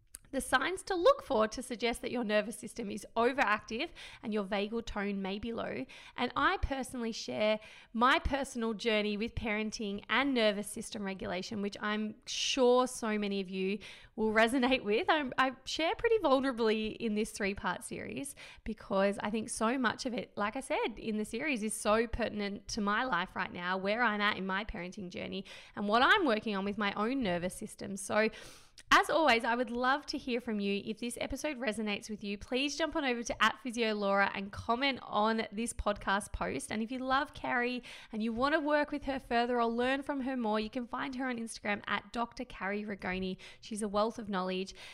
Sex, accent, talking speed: female, Australian, 200 wpm